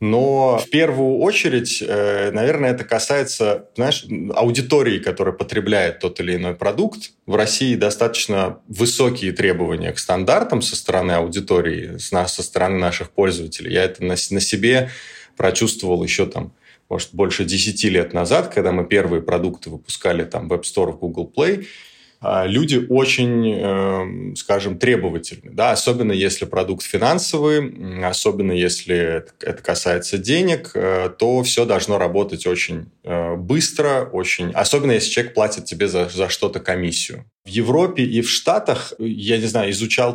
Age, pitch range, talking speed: 30-49, 90-125 Hz, 135 wpm